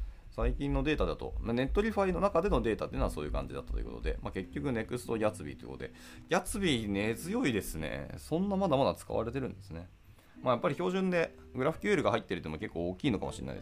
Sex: male